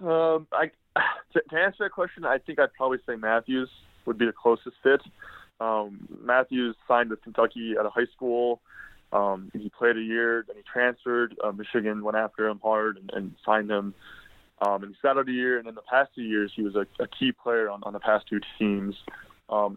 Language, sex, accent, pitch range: English, male, American, 100-120 Hz